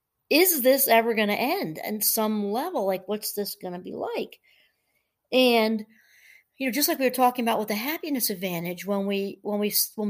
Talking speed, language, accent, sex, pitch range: 200 wpm, English, American, female, 200-245 Hz